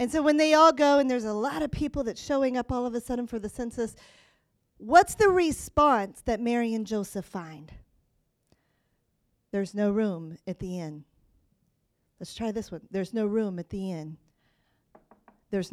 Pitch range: 215-335 Hz